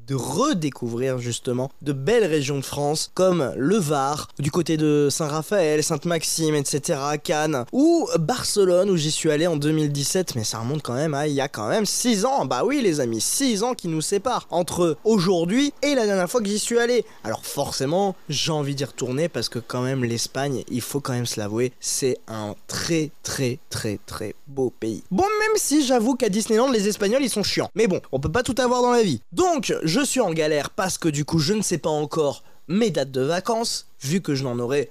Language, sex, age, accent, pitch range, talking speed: French, male, 20-39, French, 135-215 Hz, 220 wpm